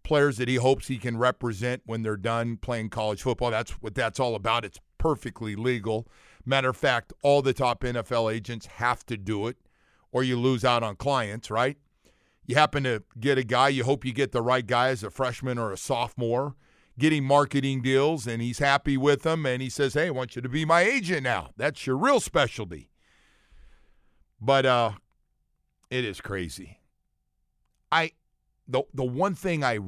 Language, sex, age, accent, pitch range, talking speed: English, male, 50-69, American, 105-135 Hz, 190 wpm